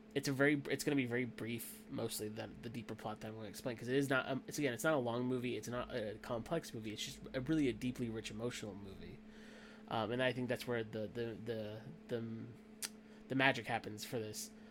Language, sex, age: English, male, 20-39